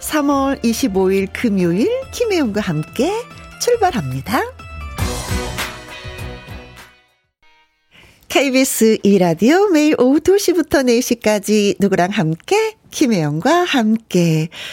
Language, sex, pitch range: Korean, female, 170-255 Hz